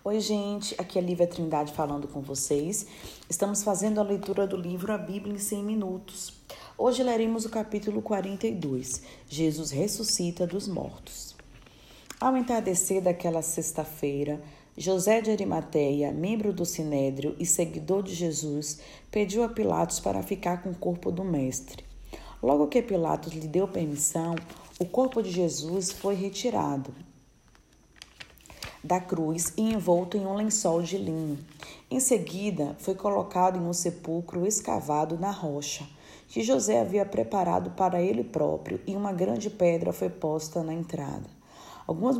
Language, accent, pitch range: Portuguese, Brazilian, 160-200 Hz